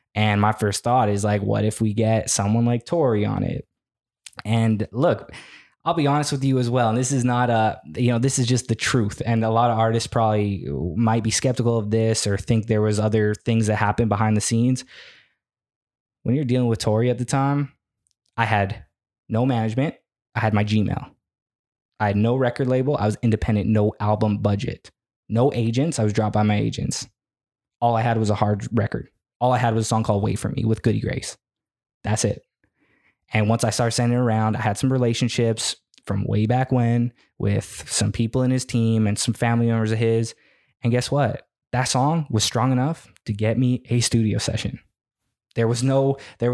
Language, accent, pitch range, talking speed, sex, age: English, American, 110-125 Hz, 205 wpm, male, 20-39